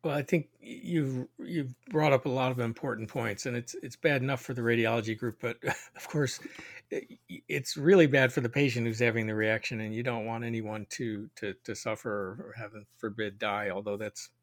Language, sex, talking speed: English, male, 210 wpm